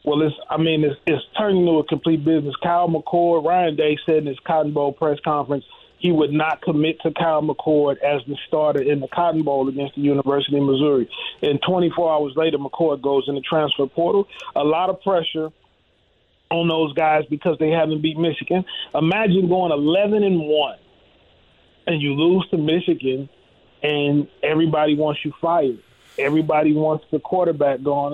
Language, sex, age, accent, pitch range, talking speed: English, male, 30-49, American, 145-165 Hz, 175 wpm